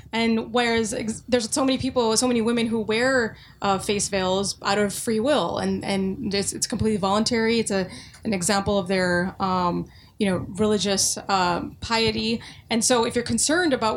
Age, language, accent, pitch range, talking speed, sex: 20-39, English, American, 195-230 Hz, 185 wpm, female